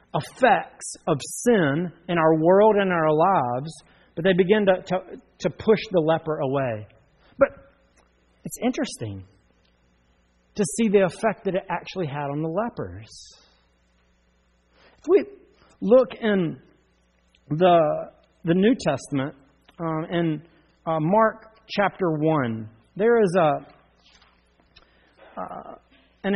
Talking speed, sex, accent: 120 wpm, male, American